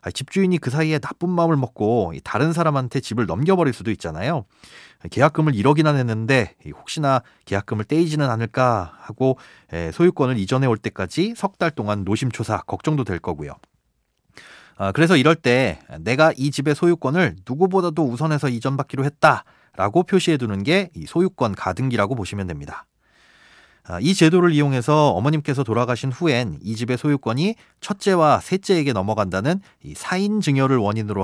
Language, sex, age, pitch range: Korean, male, 30-49, 110-160 Hz